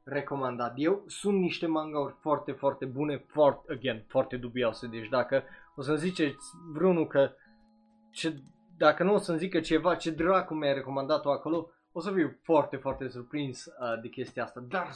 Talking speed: 170 wpm